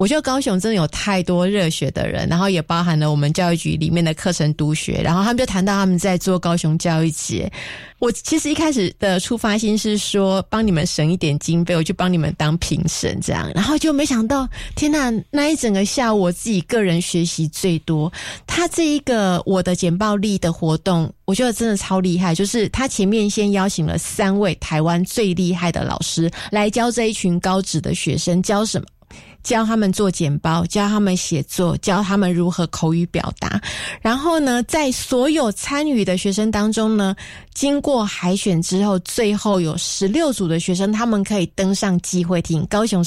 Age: 20-39